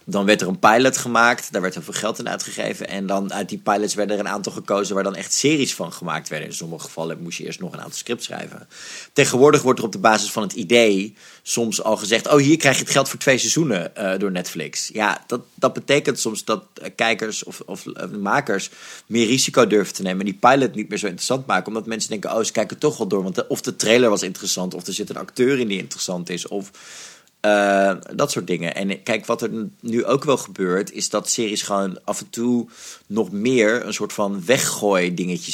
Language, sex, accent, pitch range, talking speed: Dutch, male, Dutch, 95-115 Hz, 240 wpm